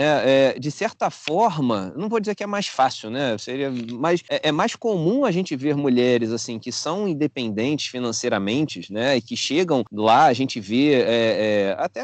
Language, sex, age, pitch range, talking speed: Portuguese, male, 30-49, 125-170 Hz, 195 wpm